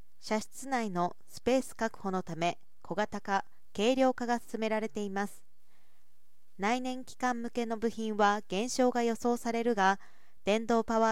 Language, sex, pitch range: Japanese, female, 190-240 Hz